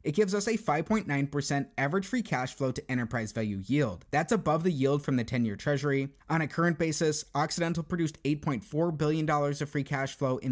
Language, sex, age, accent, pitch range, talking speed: English, male, 30-49, American, 135-170 Hz, 195 wpm